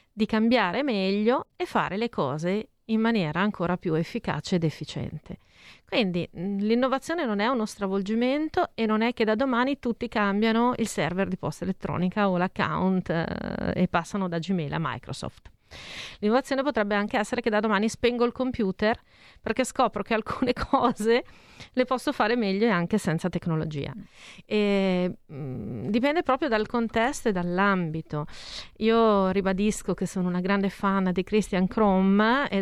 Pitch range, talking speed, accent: 180-230 Hz, 150 wpm, native